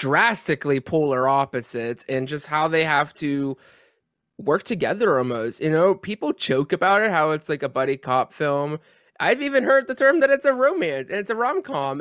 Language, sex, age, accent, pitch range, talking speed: English, male, 20-39, American, 140-205 Hz, 190 wpm